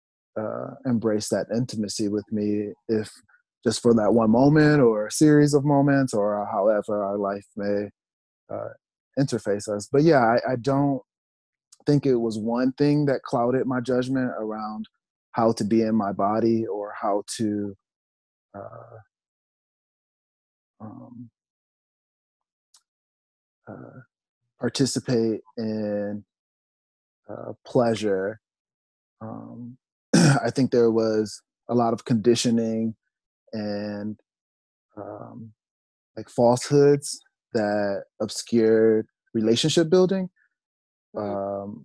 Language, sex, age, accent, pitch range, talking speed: English, male, 20-39, American, 105-120 Hz, 105 wpm